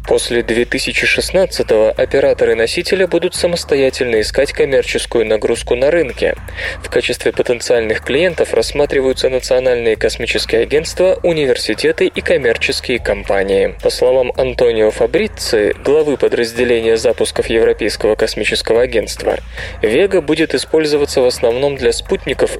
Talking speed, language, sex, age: 105 wpm, Russian, male, 20-39